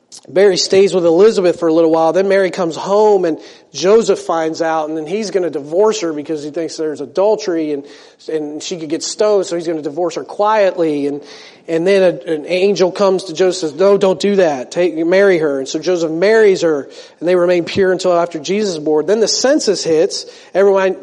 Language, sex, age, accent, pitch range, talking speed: English, male, 40-59, American, 160-205 Hz, 225 wpm